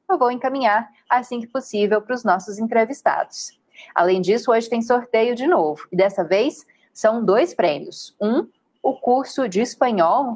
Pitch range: 205-270 Hz